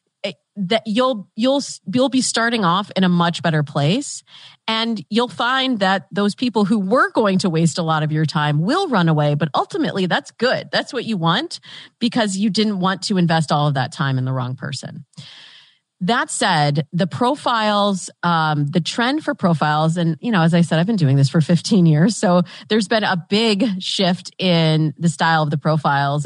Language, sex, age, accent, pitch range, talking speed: English, female, 30-49, American, 160-220 Hz, 200 wpm